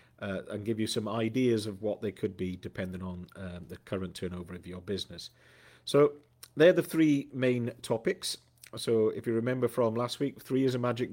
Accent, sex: British, male